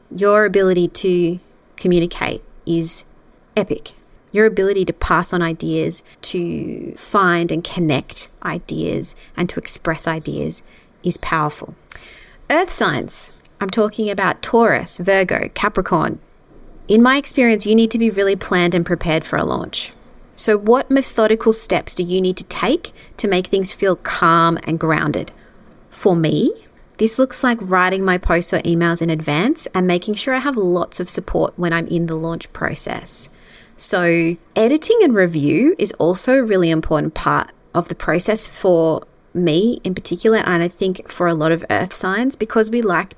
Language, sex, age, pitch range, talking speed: English, female, 30-49, 170-215 Hz, 160 wpm